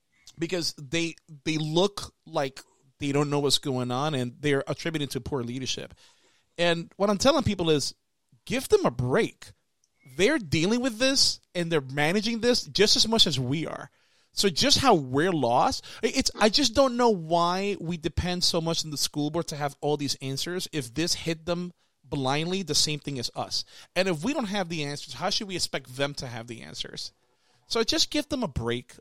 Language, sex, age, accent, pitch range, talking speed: English, male, 30-49, American, 135-175 Hz, 200 wpm